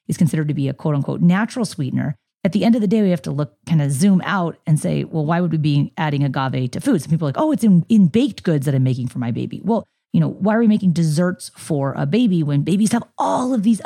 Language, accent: English, American